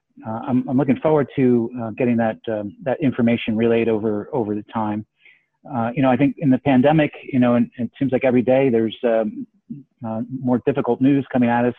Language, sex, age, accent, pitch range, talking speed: English, male, 40-59, American, 115-125 Hz, 220 wpm